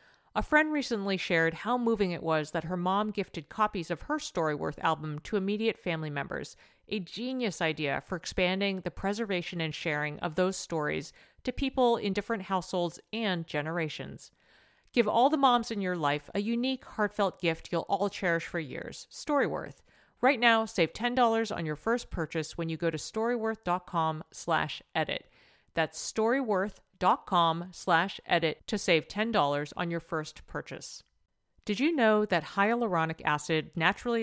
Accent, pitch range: American, 165-225 Hz